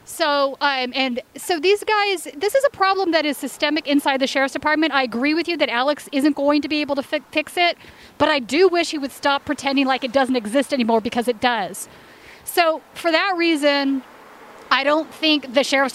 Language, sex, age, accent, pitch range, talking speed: English, female, 40-59, American, 260-310 Hz, 210 wpm